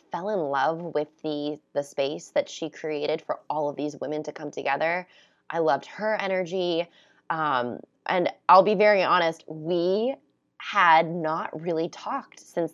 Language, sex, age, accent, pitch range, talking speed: English, female, 20-39, American, 150-185 Hz, 160 wpm